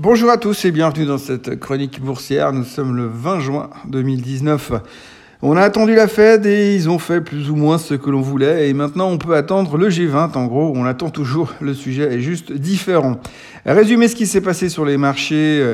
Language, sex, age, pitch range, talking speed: French, male, 50-69, 135-175 Hz, 215 wpm